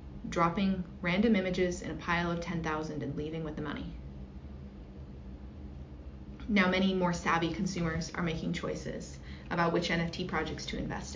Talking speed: 145 wpm